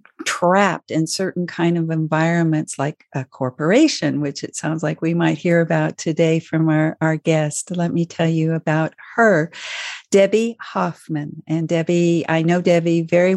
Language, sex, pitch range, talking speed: English, female, 160-185 Hz, 160 wpm